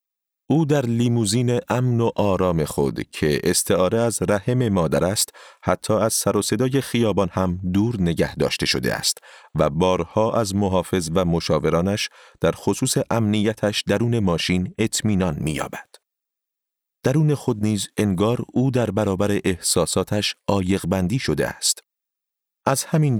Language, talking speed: Persian, 130 wpm